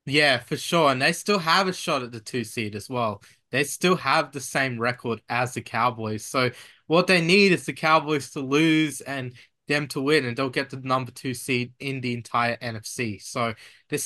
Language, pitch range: English, 125-160 Hz